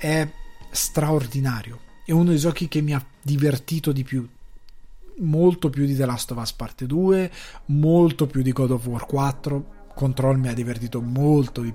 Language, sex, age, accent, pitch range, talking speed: Italian, male, 20-39, native, 130-150 Hz, 175 wpm